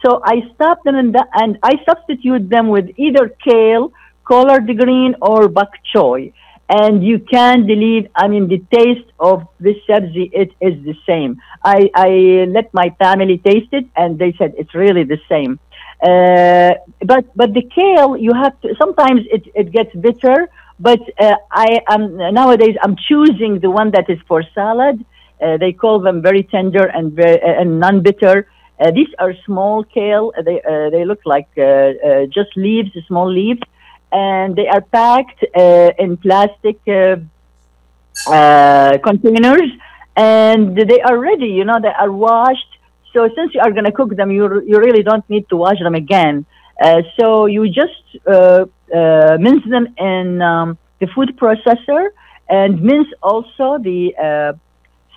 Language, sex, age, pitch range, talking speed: Arabic, female, 50-69, 185-240 Hz, 165 wpm